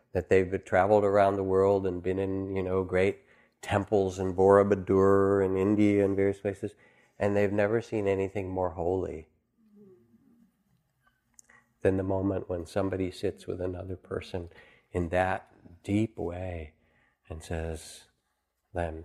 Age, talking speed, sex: 50-69, 135 wpm, male